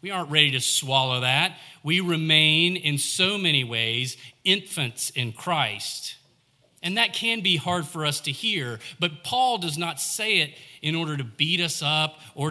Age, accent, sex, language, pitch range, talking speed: 40-59, American, male, English, 125-160 Hz, 175 wpm